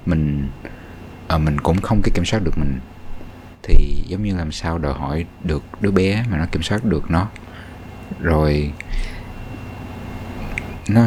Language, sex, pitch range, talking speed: Vietnamese, male, 80-110 Hz, 150 wpm